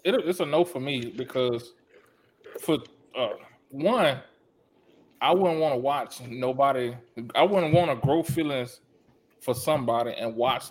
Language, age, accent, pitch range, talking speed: English, 20-39, American, 120-140 Hz, 145 wpm